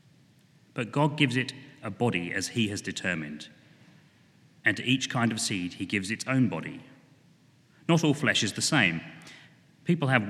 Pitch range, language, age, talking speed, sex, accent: 100-150 Hz, English, 30-49, 170 wpm, male, British